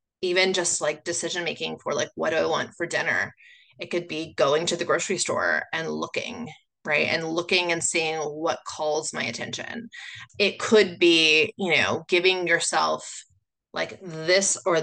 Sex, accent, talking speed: female, American, 165 wpm